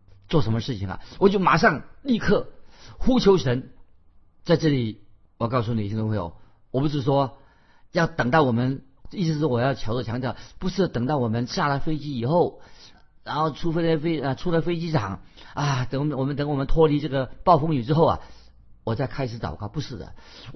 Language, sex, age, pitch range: Chinese, male, 50-69, 115-170 Hz